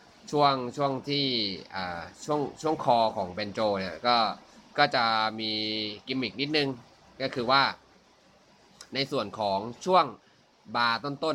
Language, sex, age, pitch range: Thai, male, 20-39, 110-135 Hz